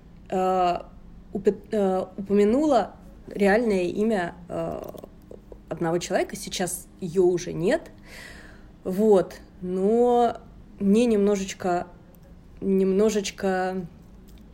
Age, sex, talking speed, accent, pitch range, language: 20-39, female, 65 wpm, native, 175-210 Hz, Russian